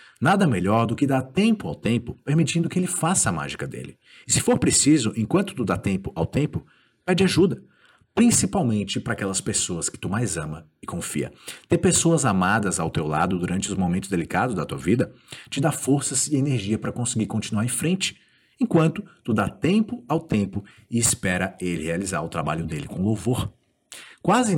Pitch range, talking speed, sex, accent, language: 105-160 Hz, 185 wpm, male, Brazilian, Portuguese